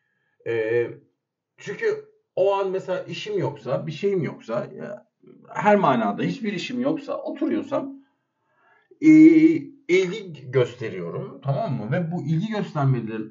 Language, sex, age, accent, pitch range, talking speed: Turkish, male, 50-69, native, 130-180 Hz, 115 wpm